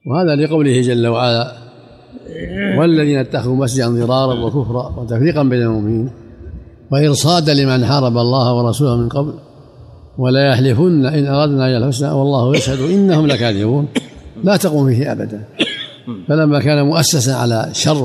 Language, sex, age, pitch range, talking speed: Arabic, male, 50-69, 120-145 Hz, 125 wpm